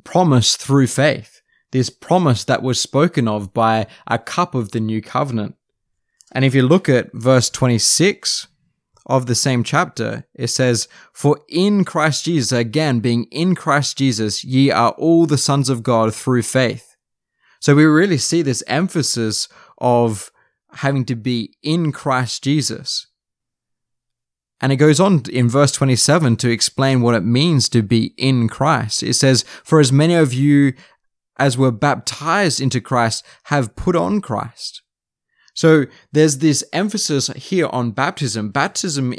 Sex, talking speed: male, 155 wpm